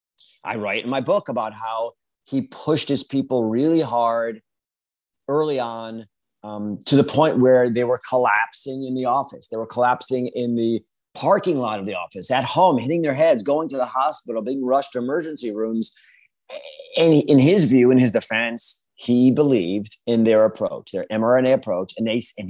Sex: male